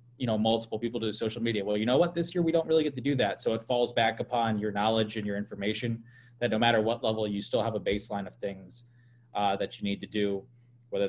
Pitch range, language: 105-125 Hz, English